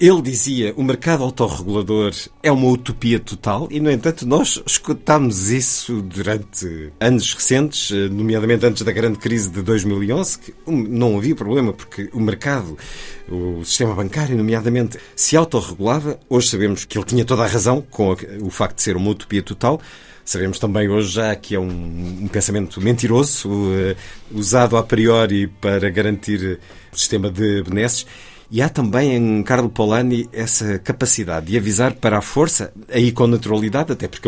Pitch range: 100-125 Hz